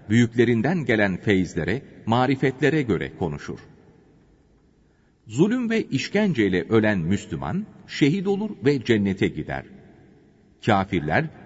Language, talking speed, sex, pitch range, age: Turkish, 95 wpm, male, 100-135 Hz, 40-59